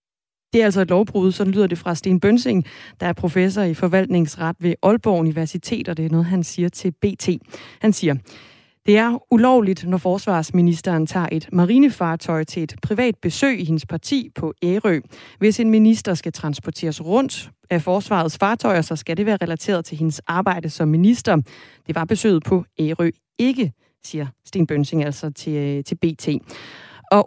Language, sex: Danish, female